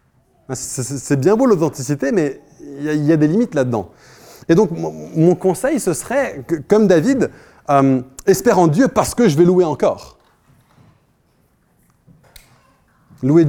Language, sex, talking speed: French, male, 135 wpm